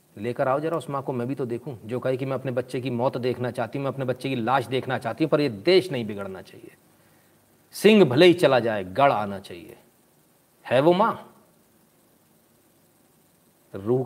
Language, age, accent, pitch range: Hindi, 40-59, native, 125-145 Hz